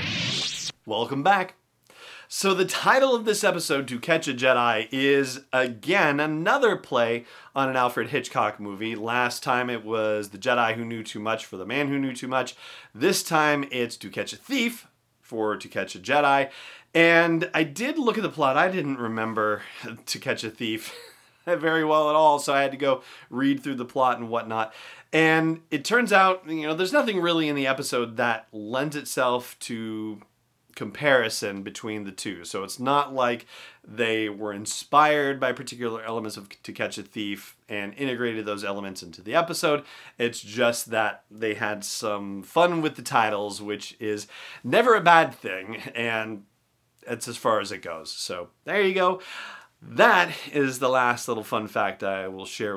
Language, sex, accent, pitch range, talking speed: English, male, American, 110-150 Hz, 180 wpm